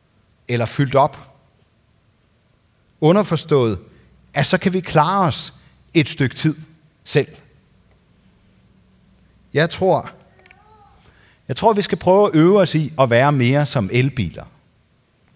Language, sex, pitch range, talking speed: Danish, male, 115-170 Hz, 115 wpm